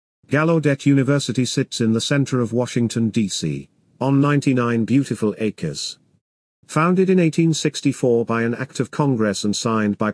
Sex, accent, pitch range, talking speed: male, British, 110-145 Hz, 140 wpm